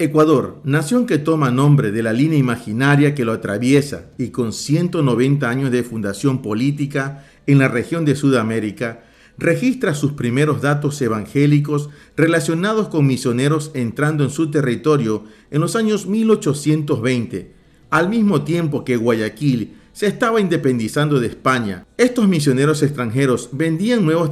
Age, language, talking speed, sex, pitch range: 50-69, Spanish, 135 wpm, male, 125-160 Hz